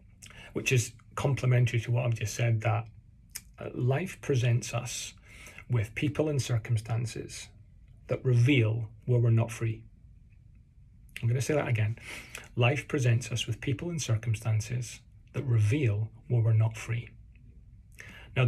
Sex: male